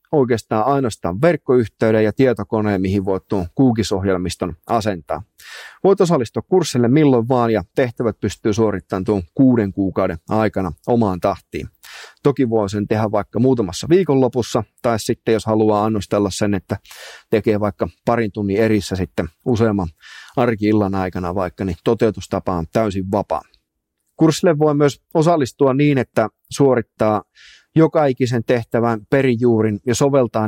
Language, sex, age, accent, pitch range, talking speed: Finnish, male, 30-49, native, 105-125 Hz, 130 wpm